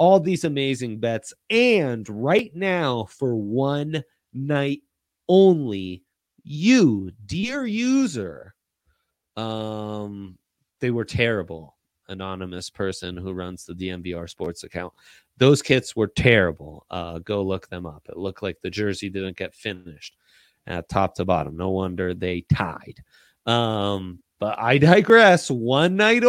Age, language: 30-49, English